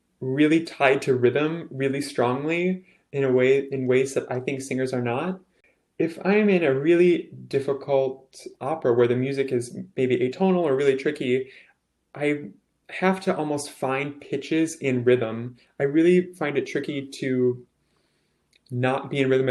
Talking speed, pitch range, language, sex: 155 wpm, 120-150 Hz, English, male